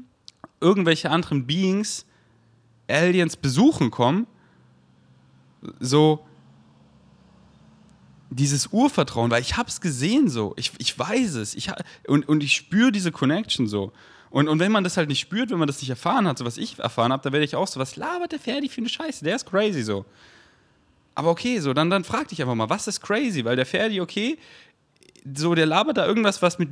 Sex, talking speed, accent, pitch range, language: male, 195 wpm, German, 135-190 Hz, German